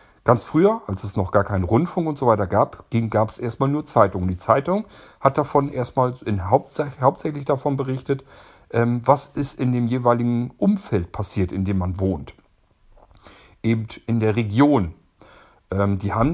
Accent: German